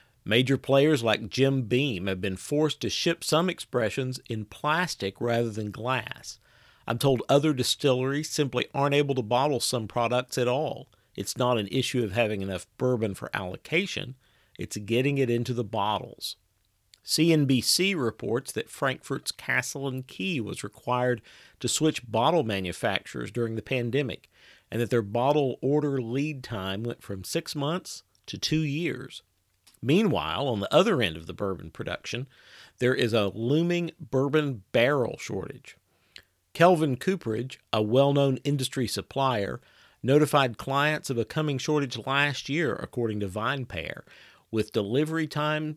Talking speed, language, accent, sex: 150 wpm, English, American, male